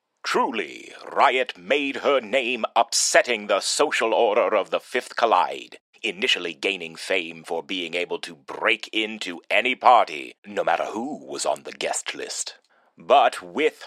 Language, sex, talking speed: English, male, 145 wpm